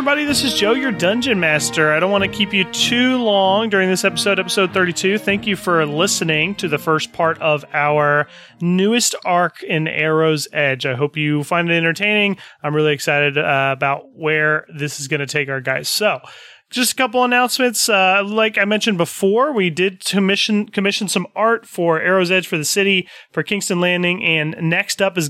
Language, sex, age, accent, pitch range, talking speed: English, male, 30-49, American, 155-200 Hz, 195 wpm